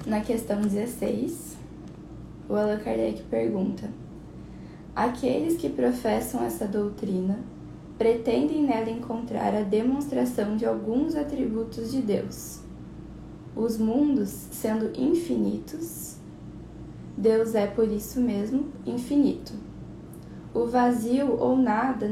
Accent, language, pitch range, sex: Brazilian, Portuguese, 205-250 Hz, female